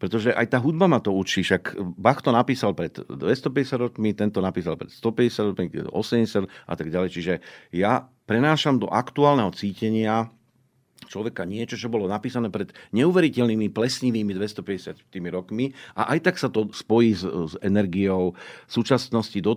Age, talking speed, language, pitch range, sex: 50-69, 155 wpm, Slovak, 95-120 Hz, male